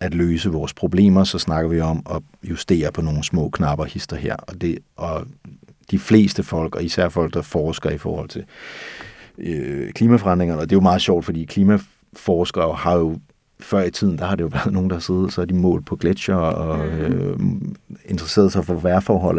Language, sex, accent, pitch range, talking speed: Danish, male, native, 80-95 Hz, 200 wpm